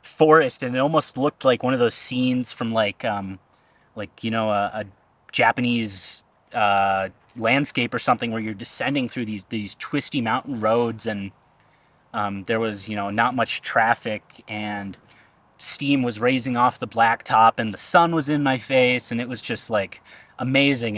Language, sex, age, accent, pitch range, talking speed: English, male, 30-49, American, 105-130 Hz, 175 wpm